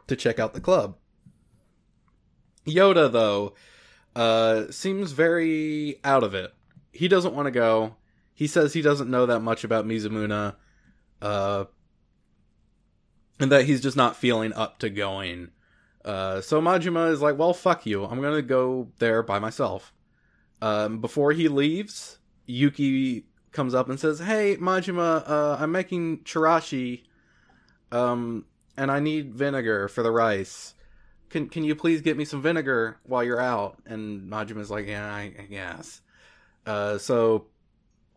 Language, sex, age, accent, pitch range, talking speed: English, male, 20-39, American, 105-145 Hz, 150 wpm